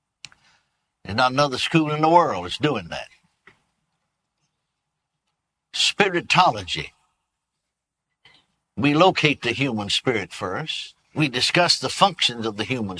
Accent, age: American, 60-79